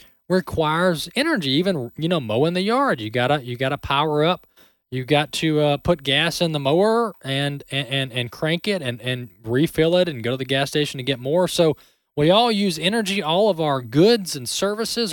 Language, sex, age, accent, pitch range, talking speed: English, male, 20-39, American, 130-175 Hz, 210 wpm